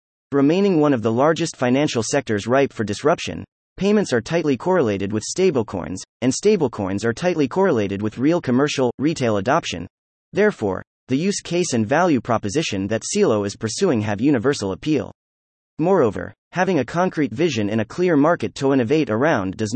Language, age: English, 30-49